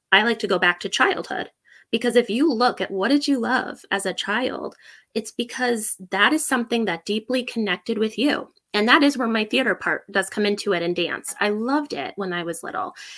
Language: English